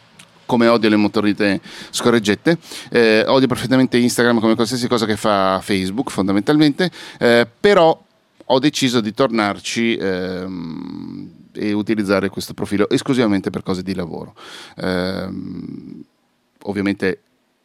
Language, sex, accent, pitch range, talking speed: Italian, male, native, 95-115 Hz, 115 wpm